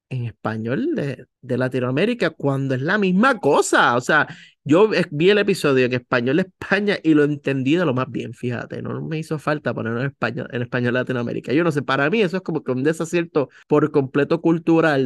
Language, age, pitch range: Spanish, 30-49, 130-170 Hz